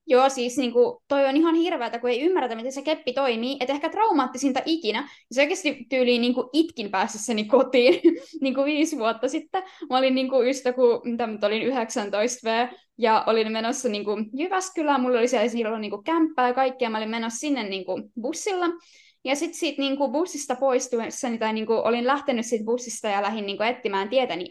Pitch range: 230-315 Hz